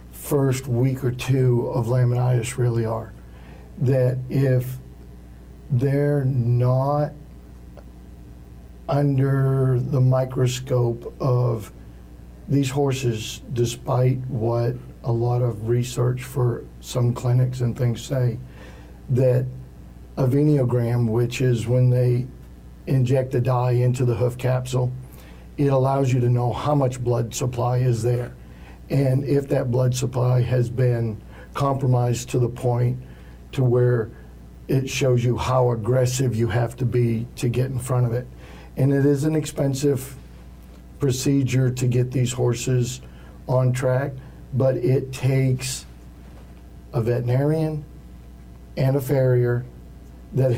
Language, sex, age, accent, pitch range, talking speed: English, male, 60-79, American, 110-130 Hz, 125 wpm